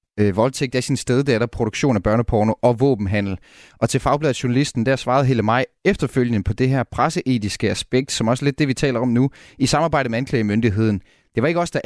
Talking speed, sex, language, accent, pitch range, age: 230 wpm, male, Danish, native, 110-140 Hz, 30-49